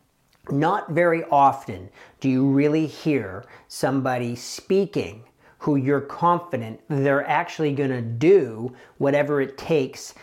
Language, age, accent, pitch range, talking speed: English, 40-59, American, 130-165 Hz, 115 wpm